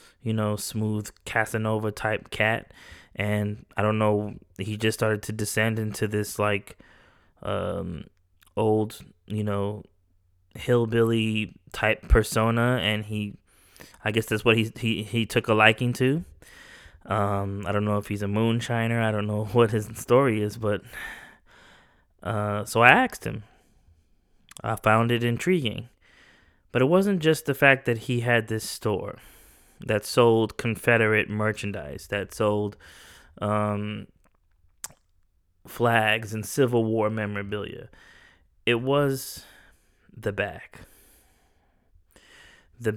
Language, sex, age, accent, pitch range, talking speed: English, male, 20-39, American, 95-115 Hz, 125 wpm